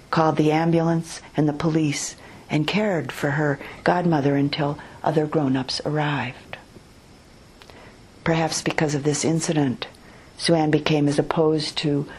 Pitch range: 145-170 Hz